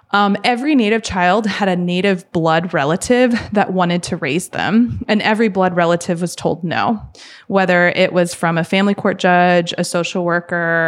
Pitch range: 175-205 Hz